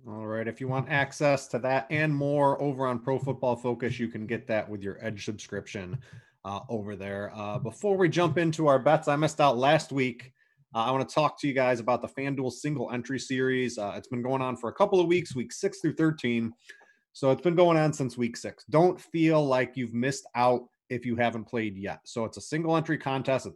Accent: American